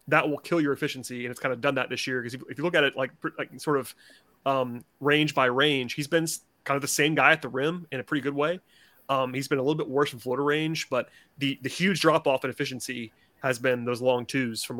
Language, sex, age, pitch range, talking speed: English, male, 30-49, 125-155 Hz, 270 wpm